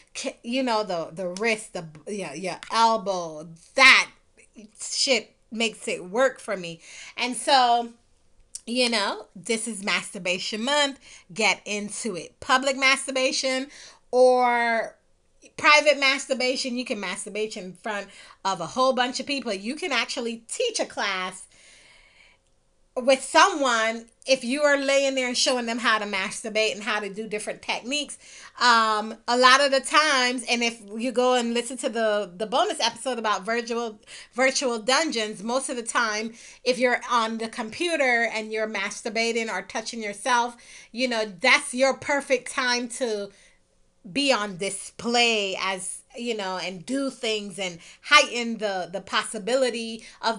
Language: English